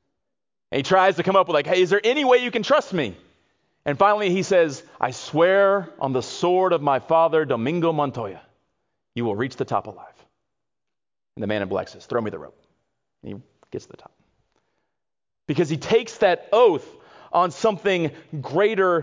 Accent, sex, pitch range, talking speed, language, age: American, male, 145-200 Hz, 190 wpm, English, 40-59